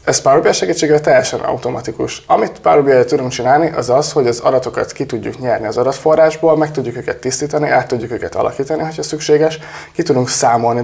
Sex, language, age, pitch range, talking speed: male, Hungarian, 20-39, 125-150 Hz, 175 wpm